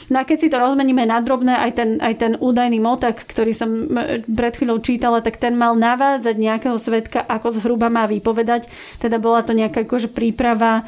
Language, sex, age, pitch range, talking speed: Slovak, female, 30-49, 225-245 Hz, 200 wpm